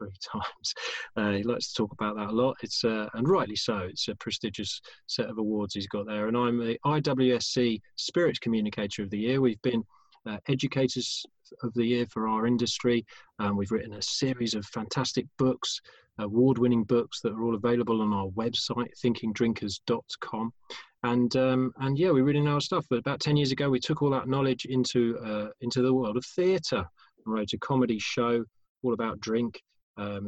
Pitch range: 110-130 Hz